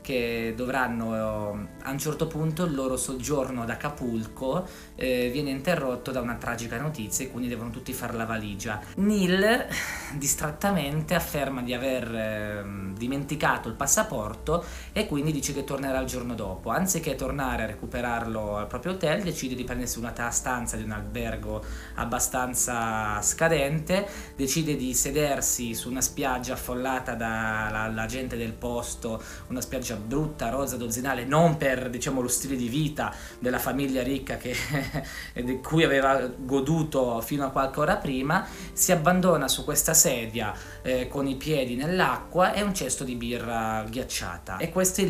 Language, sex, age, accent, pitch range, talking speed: Italian, male, 20-39, native, 120-150 Hz, 155 wpm